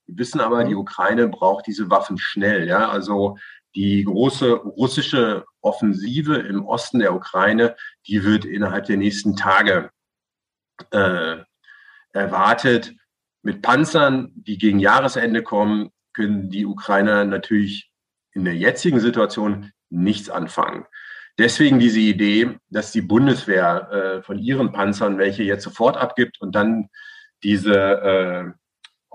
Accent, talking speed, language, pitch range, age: German, 125 wpm, German, 100-125 Hz, 40-59